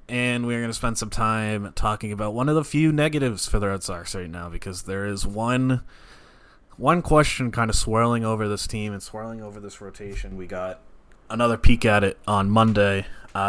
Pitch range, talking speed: 95-120 Hz, 205 wpm